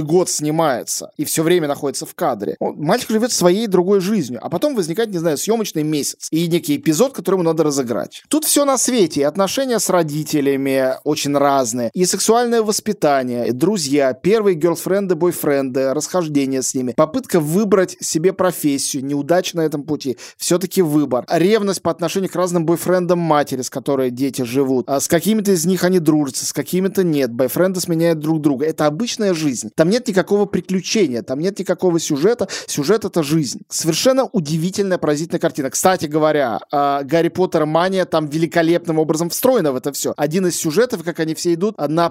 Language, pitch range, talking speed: Russian, 150-190 Hz, 170 wpm